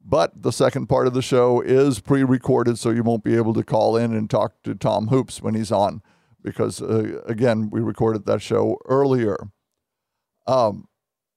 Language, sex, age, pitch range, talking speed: English, male, 50-69, 115-130 Hz, 180 wpm